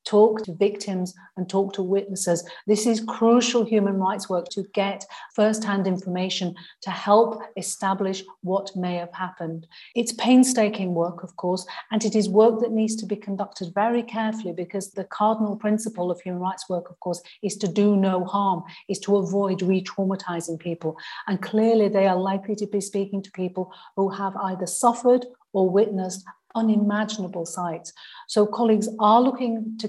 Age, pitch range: 40-59, 185-215 Hz